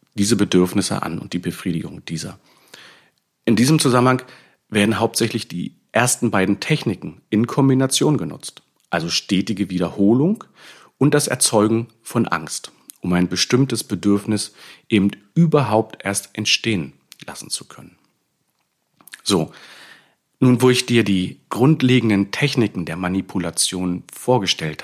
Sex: male